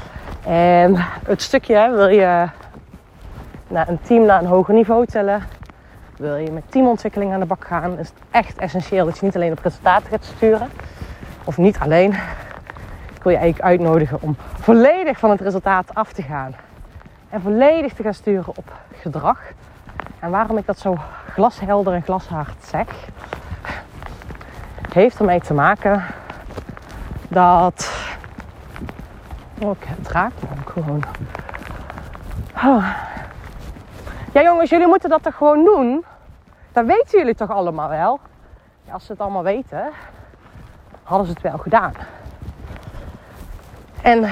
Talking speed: 140 wpm